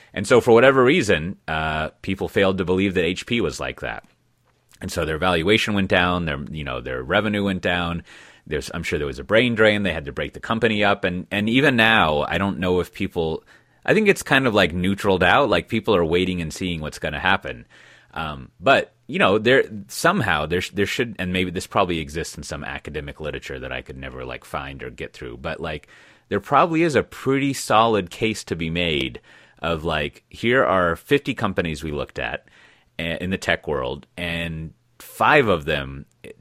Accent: American